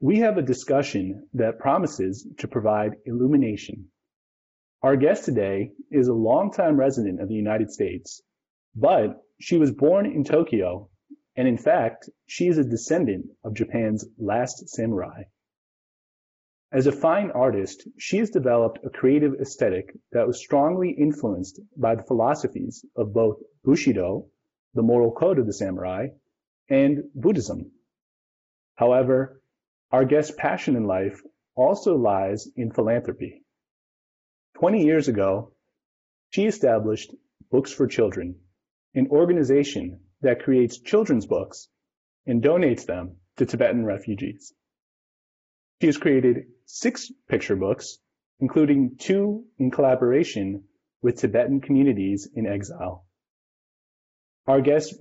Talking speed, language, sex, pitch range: 120 wpm, English, male, 105-145 Hz